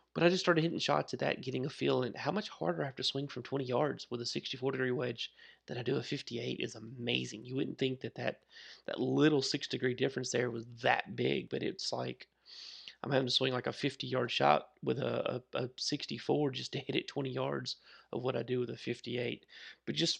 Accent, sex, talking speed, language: American, male, 230 wpm, English